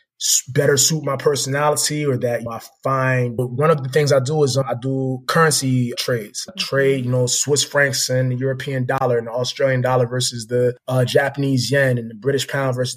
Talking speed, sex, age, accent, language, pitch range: 215 wpm, male, 20-39, American, English, 125-140 Hz